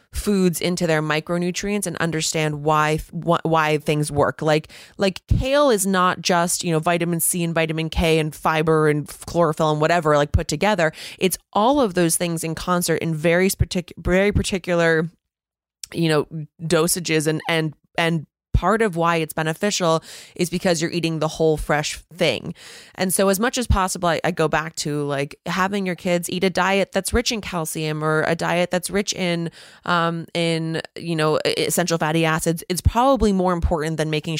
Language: English